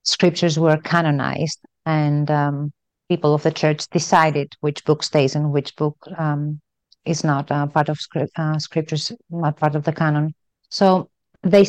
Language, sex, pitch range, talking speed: English, female, 150-175 Hz, 170 wpm